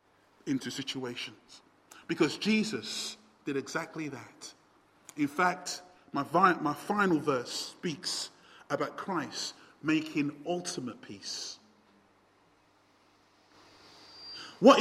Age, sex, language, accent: 30-49, male, English, British